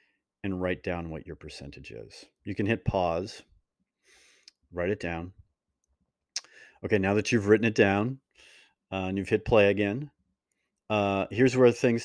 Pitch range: 95-115 Hz